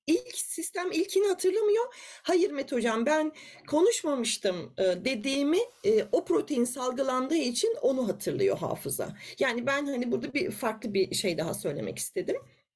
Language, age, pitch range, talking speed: Turkish, 40-59, 245-360 Hz, 130 wpm